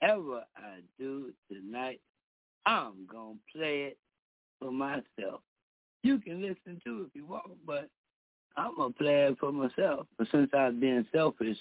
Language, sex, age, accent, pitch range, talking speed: English, male, 60-79, American, 105-135 Hz, 160 wpm